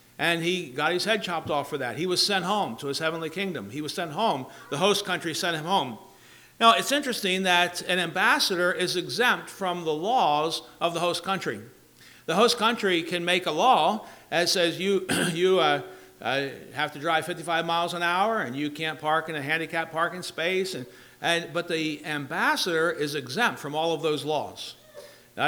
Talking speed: 200 wpm